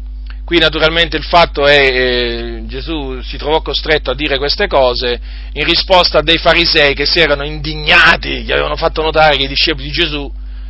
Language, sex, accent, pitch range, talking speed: Italian, male, native, 130-170 Hz, 185 wpm